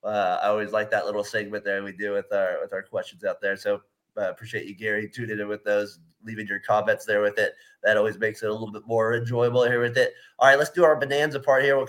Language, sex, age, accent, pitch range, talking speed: English, male, 30-49, American, 115-130 Hz, 275 wpm